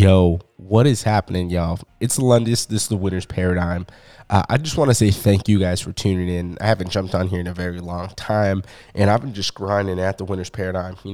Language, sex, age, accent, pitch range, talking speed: English, male, 20-39, American, 95-110 Hz, 240 wpm